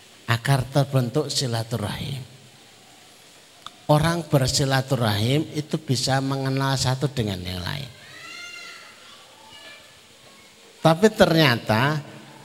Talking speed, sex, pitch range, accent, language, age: 65 wpm, male, 115-155 Hz, native, Indonesian, 50-69